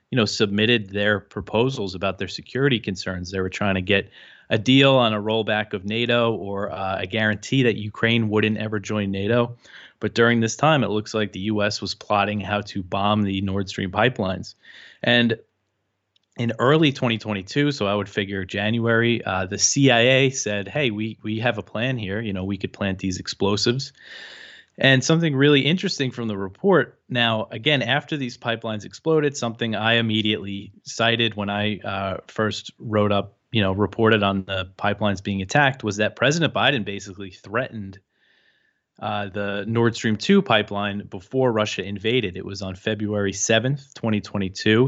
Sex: male